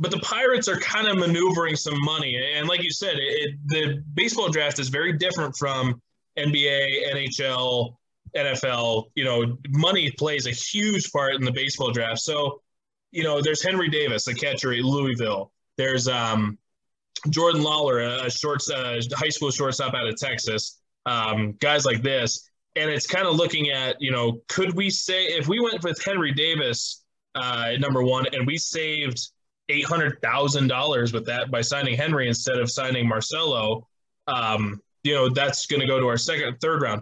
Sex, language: male, English